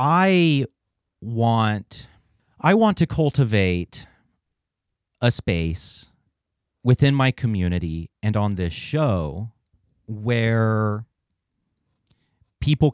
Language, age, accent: English, 30-49, American